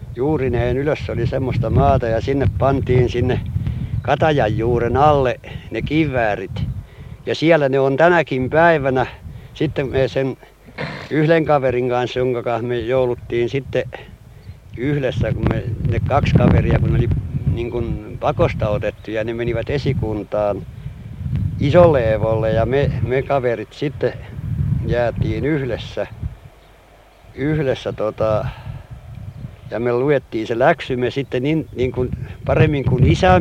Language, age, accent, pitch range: Finnish, 60-79, native, 115-135 Hz